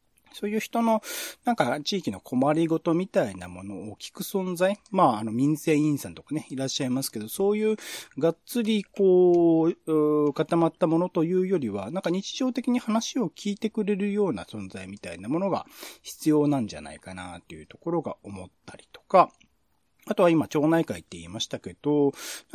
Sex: male